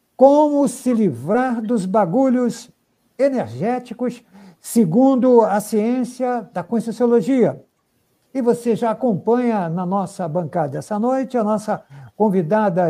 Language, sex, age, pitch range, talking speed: Portuguese, male, 60-79, 180-235 Hz, 105 wpm